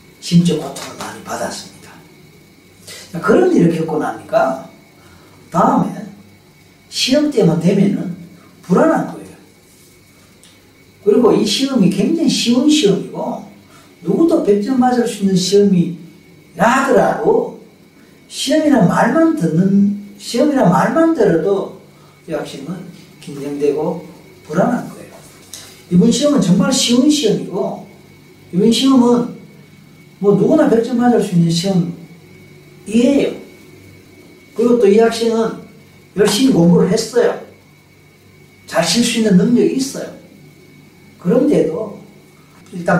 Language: Korean